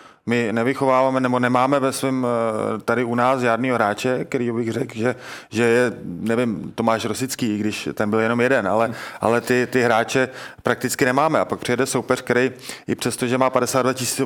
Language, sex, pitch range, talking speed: Czech, male, 115-130 Hz, 185 wpm